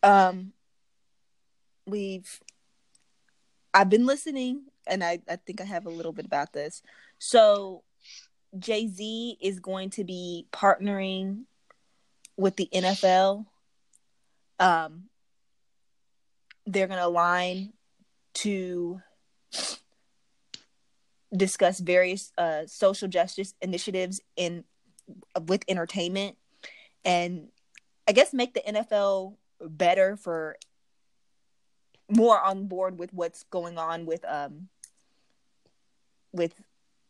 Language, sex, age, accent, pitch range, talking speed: English, female, 20-39, American, 175-205 Hz, 95 wpm